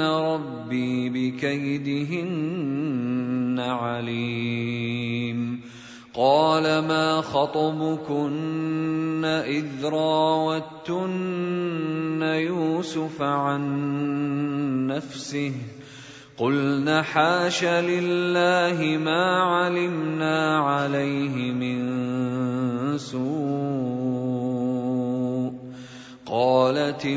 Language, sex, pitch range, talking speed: Arabic, male, 125-160 Hz, 45 wpm